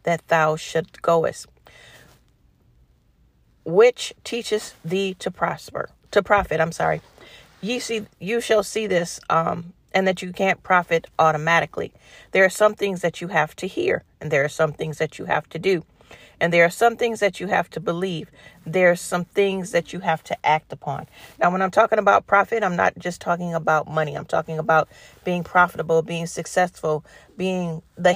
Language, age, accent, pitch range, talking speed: English, 40-59, American, 165-195 Hz, 180 wpm